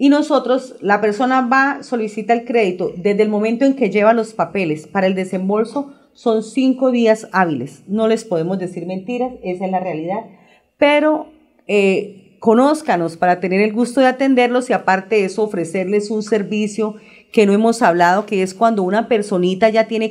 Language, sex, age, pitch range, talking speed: Spanish, female, 40-59, 205-250 Hz, 175 wpm